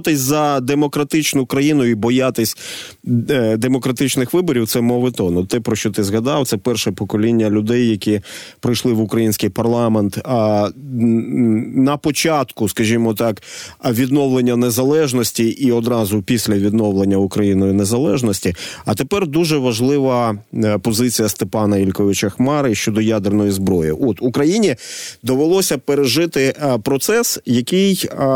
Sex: male